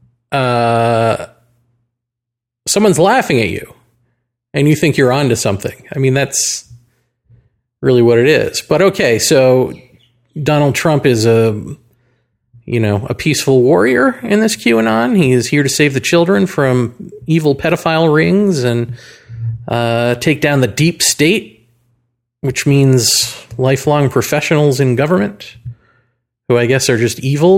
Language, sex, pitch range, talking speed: English, male, 120-155 Hz, 135 wpm